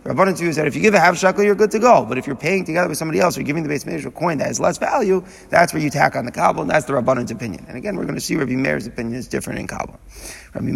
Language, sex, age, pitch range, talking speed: English, male, 30-49, 130-175 Hz, 335 wpm